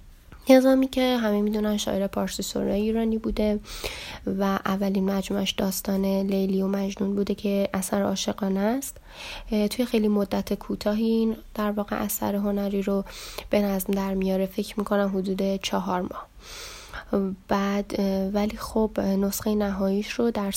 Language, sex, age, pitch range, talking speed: Persian, female, 10-29, 190-215 Hz, 135 wpm